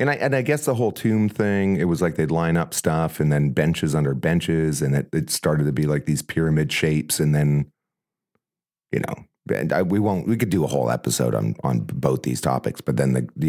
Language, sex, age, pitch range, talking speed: English, male, 40-59, 65-85 Hz, 225 wpm